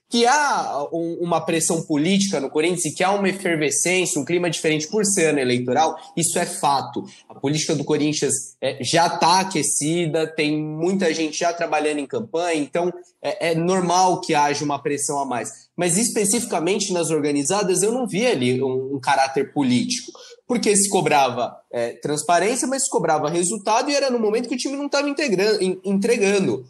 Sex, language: male, Portuguese